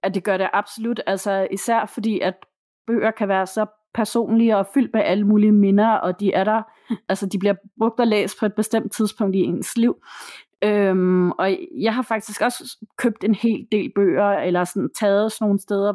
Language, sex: Danish, female